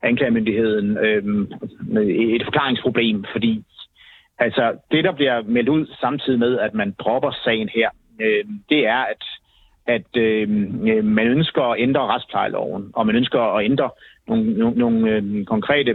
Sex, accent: male, native